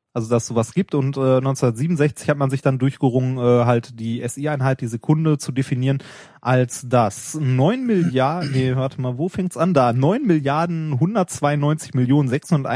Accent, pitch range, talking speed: German, 125-160 Hz, 155 wpm